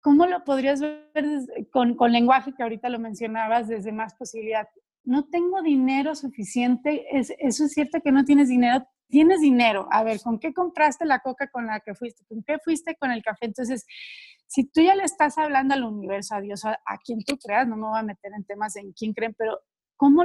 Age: 30-49